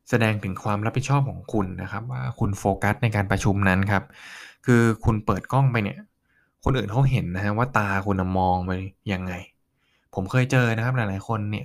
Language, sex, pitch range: Thai, male, 100-130 Hz